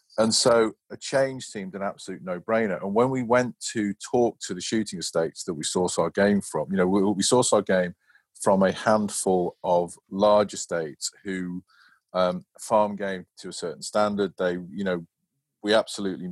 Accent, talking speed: British, 185 wpm